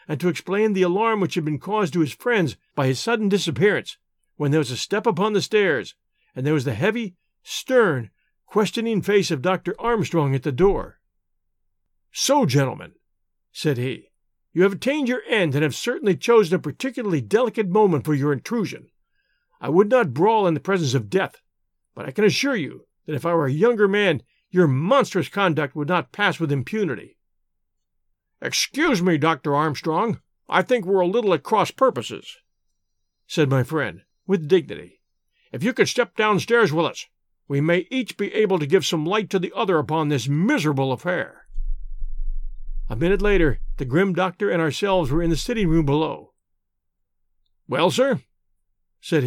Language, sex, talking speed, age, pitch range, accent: English, male, 175 wpm, 50-69, 145-210 Hz, American